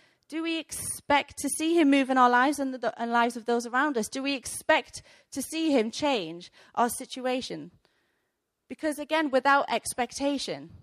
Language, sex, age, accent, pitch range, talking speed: English, female, 30-49, British, 220-280 Hz, 165 wpm